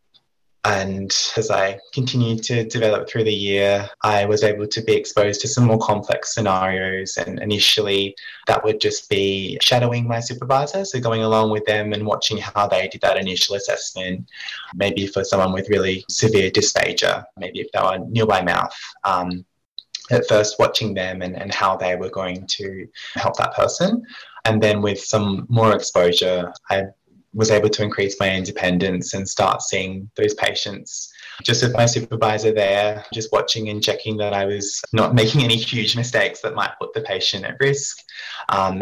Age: 20-39